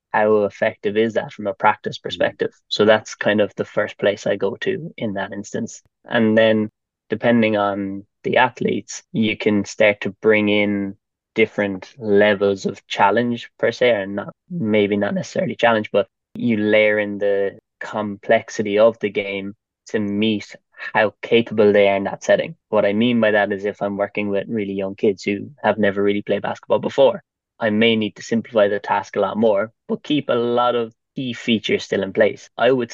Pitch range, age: 100-110 Hz, 10-29